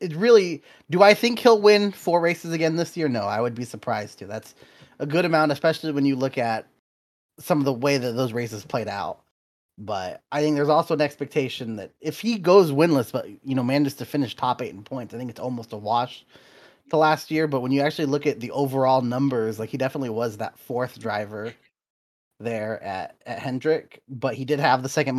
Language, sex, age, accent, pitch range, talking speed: English, male, 20-39, American, 115-150 Hz, 220 wpm